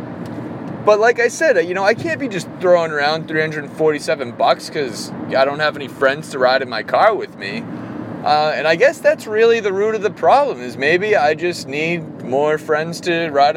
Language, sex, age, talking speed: English, male, 30-49, 210 wpm